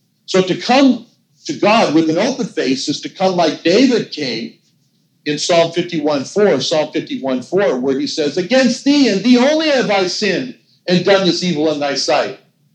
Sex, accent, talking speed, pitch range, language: male, American, 180 wpm, 150-235 Hz, English